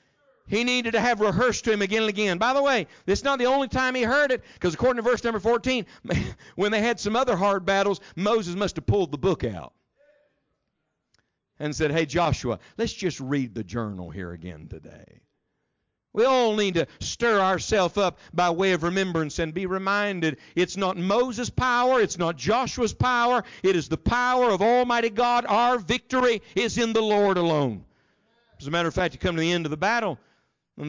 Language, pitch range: English, 145-230 Hz